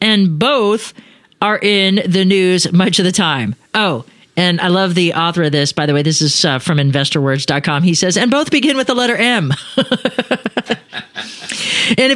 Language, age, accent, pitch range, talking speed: English, 40-59, American, 180-240 Hz, 180 wpm